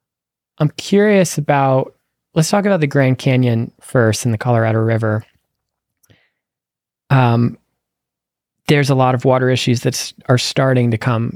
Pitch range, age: 115-135 Hz, 20-39